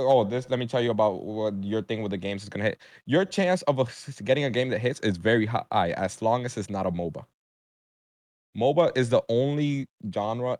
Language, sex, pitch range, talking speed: English, male, 100-130 Hz, 220 wpm